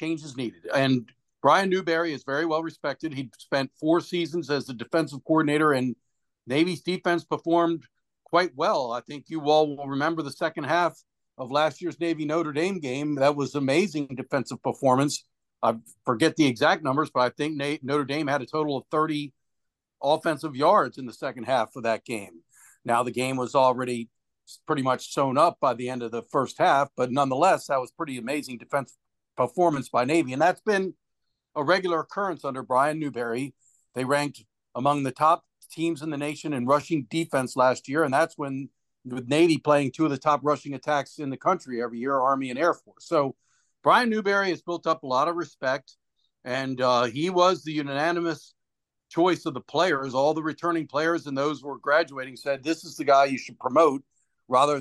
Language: English